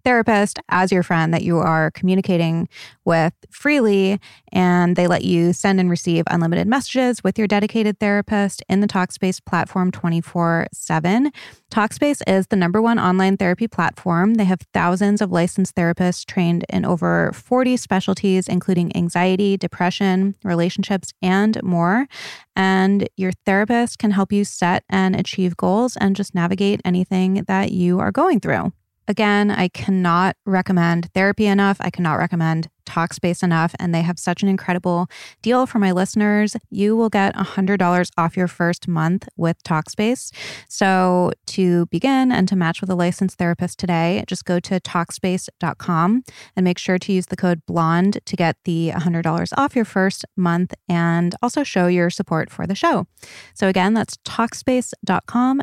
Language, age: English, 20-39